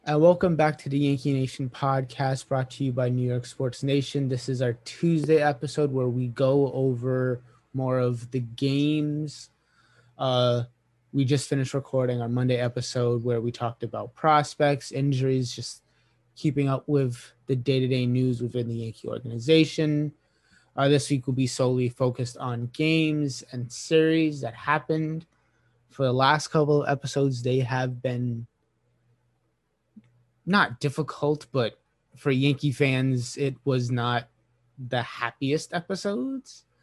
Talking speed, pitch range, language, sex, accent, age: 145 wpm, 120-145 Hz, English, male, American, 20-39